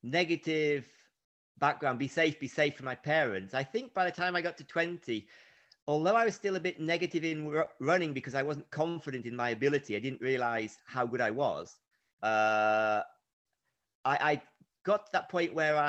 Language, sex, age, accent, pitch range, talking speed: English, male, 40-59, British, 120-160 Hz, 185 wpm